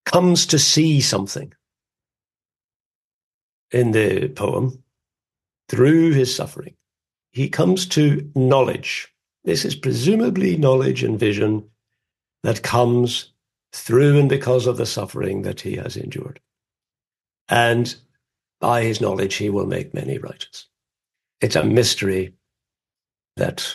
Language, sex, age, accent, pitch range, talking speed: English, male, 60-79, British, 110-145 Hz, 115 wpm